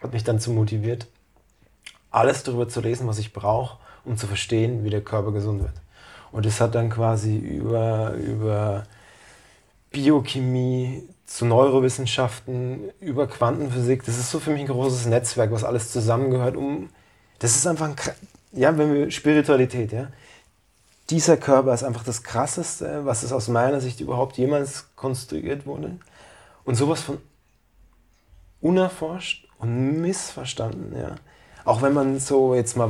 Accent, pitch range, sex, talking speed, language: German, 115-135 Hz, male, 150 wpm, German